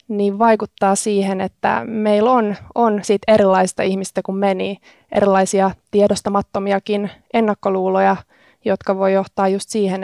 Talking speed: 125 wpm